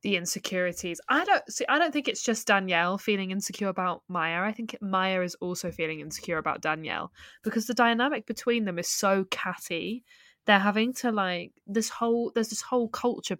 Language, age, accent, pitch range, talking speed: English, 10-29, British, 175-230 Hz, 190 wpm